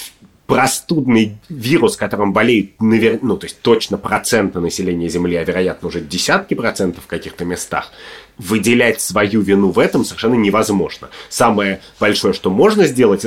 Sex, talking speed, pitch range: male, 140 wpm, 90-110 Hz